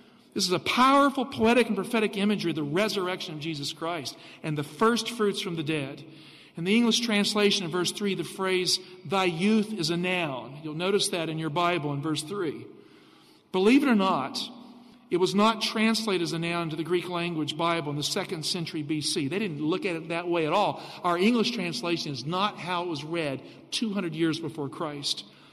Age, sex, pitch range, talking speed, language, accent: 50-69, male, 160-215 Hz, 205 wpm, English, American